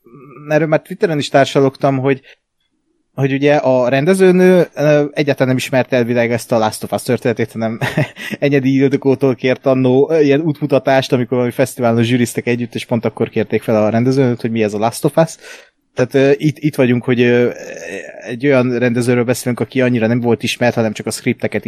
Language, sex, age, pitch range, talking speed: Hungarian, male, 20-39, 120-140 Hz, 175 wpm